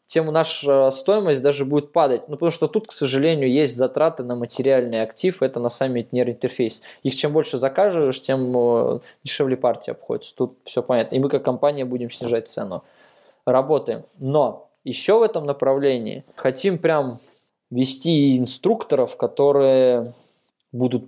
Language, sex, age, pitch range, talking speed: Russian, male, 20-39, 130-170 Hz, 140 wpm